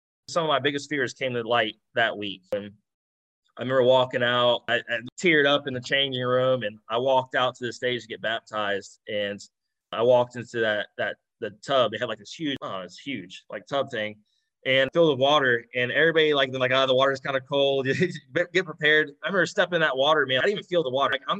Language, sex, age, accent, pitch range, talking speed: English, male, 20-39, American, 120-145 Hz, 235 wpm